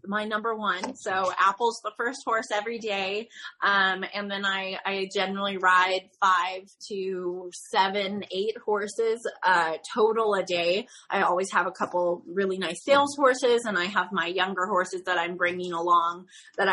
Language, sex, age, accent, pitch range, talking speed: English, female, 20-39, American, 185-210 Hz, 165 wpm